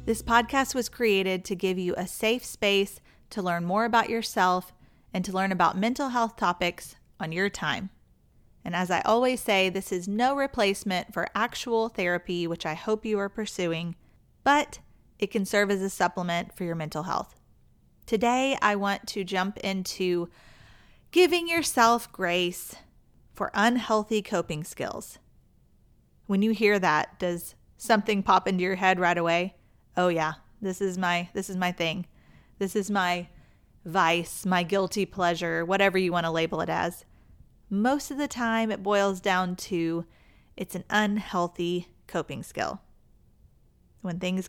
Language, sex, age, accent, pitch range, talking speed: English, female, 30-49, American, 175-220 Hz, 160 wpm